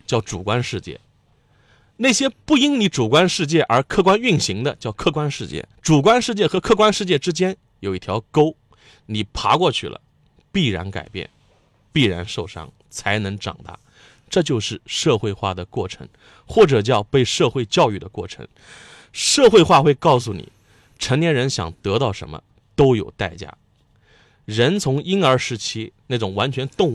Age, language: 30-49, Chinese